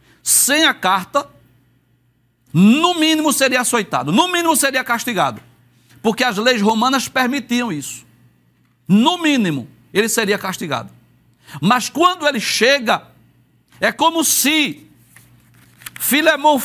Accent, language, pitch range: Brazilian, Portuguese, 190-280 Hz